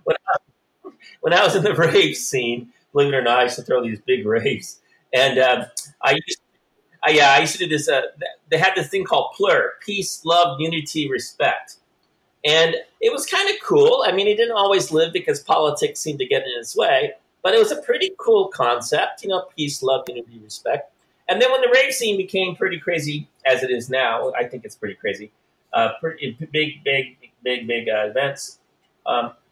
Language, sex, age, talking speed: English, male, 40-59, 210 wpm